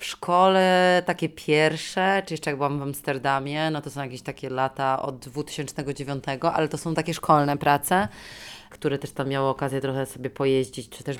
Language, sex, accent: Polish, female, native